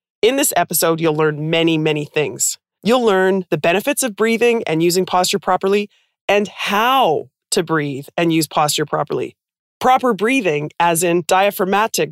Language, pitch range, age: English, 160-205 Hz, 30-49